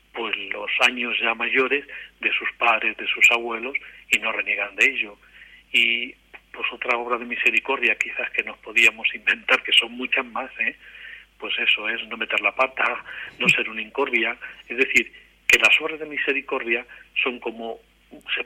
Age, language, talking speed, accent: 40-59, Spanish, 170 wpm, Spanish